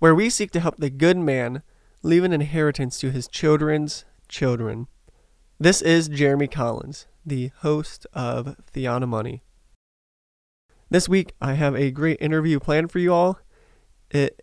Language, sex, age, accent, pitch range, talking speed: English, male, 20-39, American, 125-150 Hz, 145 wpm